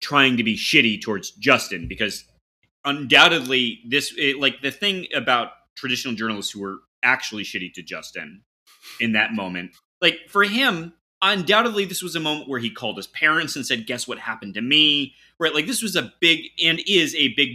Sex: male